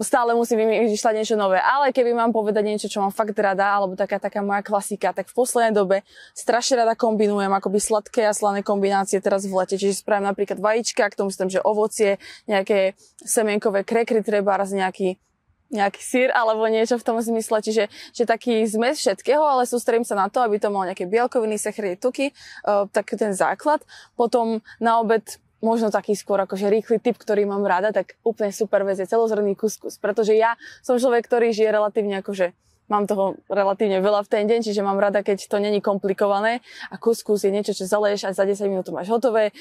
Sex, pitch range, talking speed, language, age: female, 195-230 Hz, 195 wpm, Slovak, 20-39